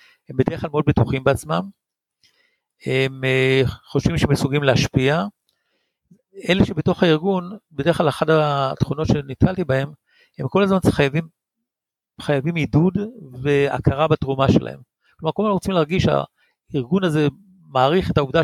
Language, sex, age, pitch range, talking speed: Hebrew, male, 60-79, 130-165 Hz, 125 wpm